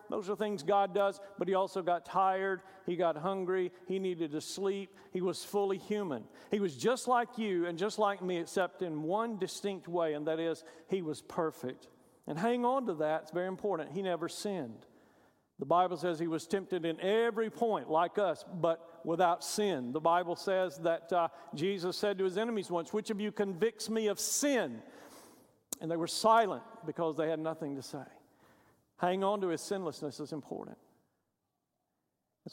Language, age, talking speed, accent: English, 50-69, 190 wpm, American